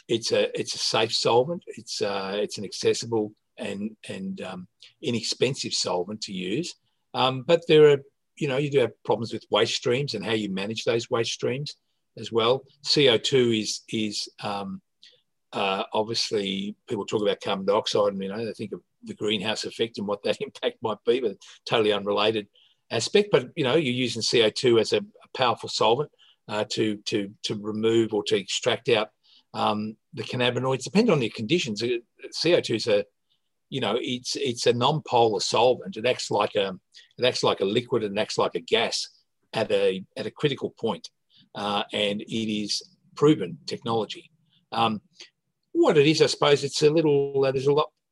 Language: English